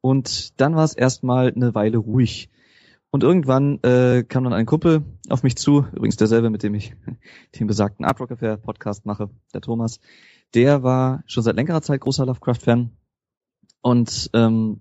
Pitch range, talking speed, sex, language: 110-125 Hz, 165 wpm, male, German